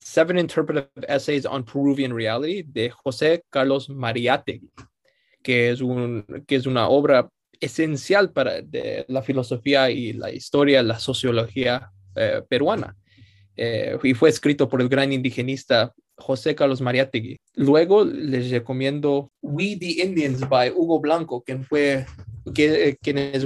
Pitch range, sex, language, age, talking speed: 120-145 Hz, male, English, 20-39, 140 wpm